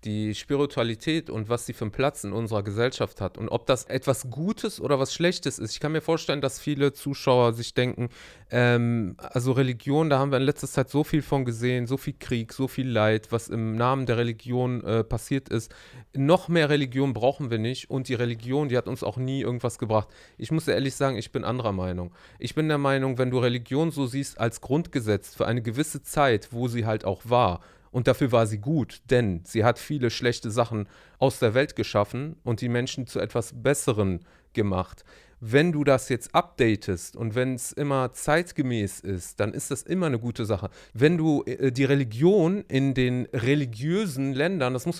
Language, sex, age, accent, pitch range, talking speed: German, male, 30-49, German, 115-145 Hz, 200 wpm